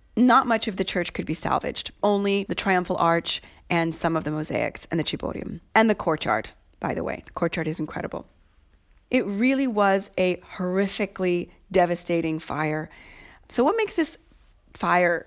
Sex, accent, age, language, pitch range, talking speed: female, American, 30-49, English, 175-220 Hz, 165 wpm